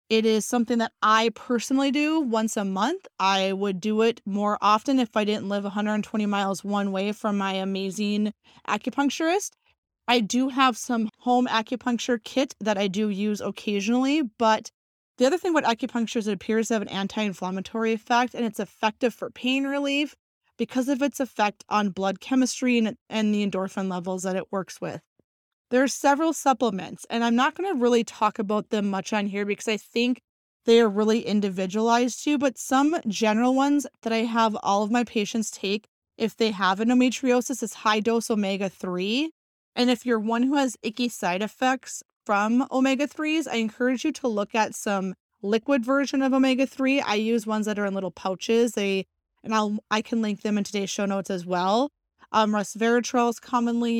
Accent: American